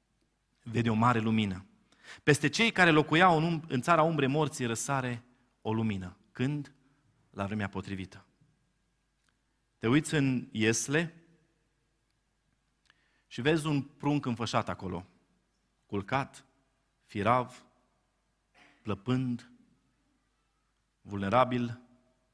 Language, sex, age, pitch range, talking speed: Romanian, male, 30-49, 110-145 Hz, 95 wpm